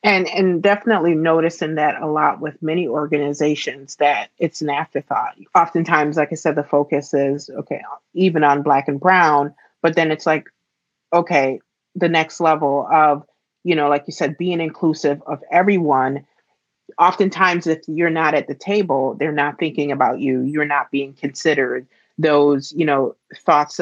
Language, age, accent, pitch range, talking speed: English, 30-49, American, 145-170 Hz, 165 wpm